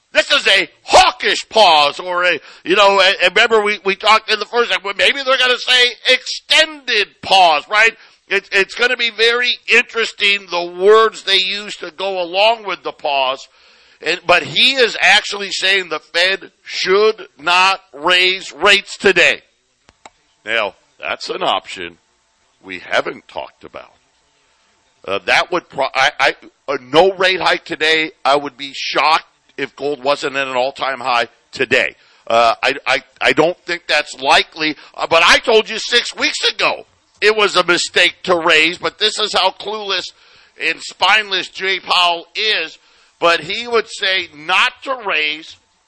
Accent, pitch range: American, 170-215 Hz